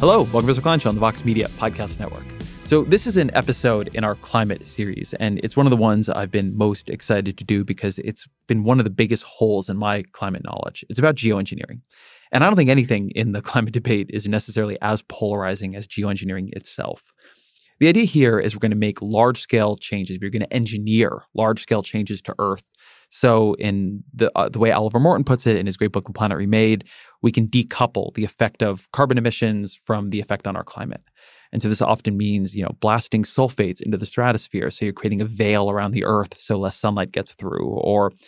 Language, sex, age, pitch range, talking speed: English, male, 30-49, 100-120 Hz, 215 wpm